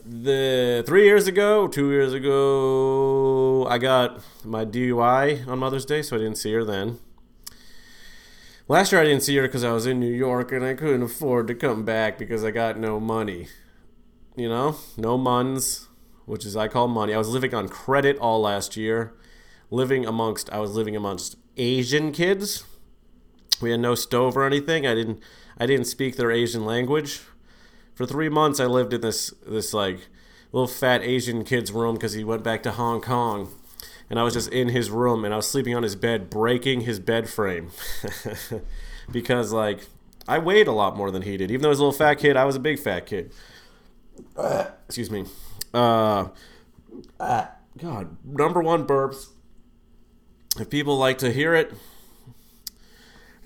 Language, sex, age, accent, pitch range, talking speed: English, male, 30-49, American, 110-135 Hz, 180 wpm